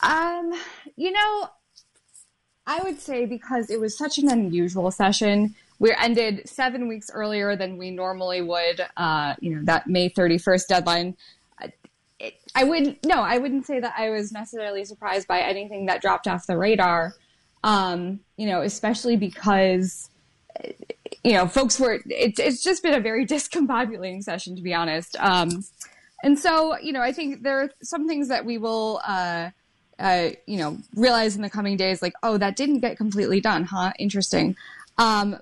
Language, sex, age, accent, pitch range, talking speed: English, female, 10-29, American, 185-250 Hz, 170 wpm